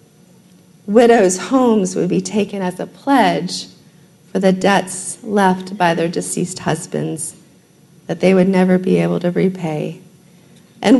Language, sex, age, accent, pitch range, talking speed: English, female, 40-59, American, 175-220 Hz, 135 wpm